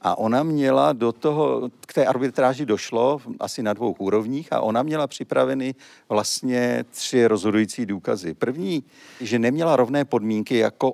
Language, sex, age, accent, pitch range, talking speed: Czech, male, 50-69, native, 110-135 Hz, 150 wpm